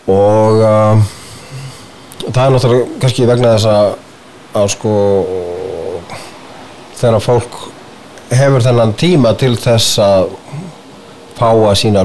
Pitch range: 100-125 Hz